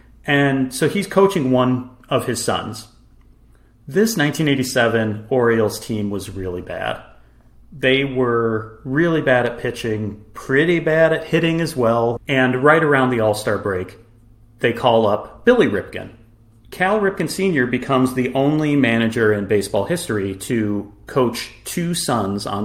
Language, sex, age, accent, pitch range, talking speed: English, male, 40-59, American, 110-140 Hz, 140 wpm